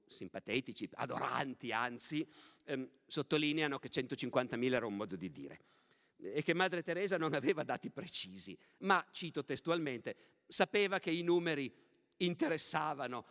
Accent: native